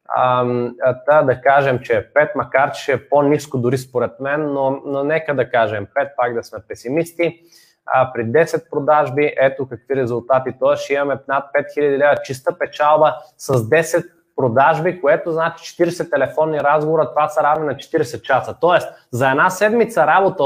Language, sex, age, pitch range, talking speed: Bulgarian, male, 20-39, 135-165 Hz, 160 wpm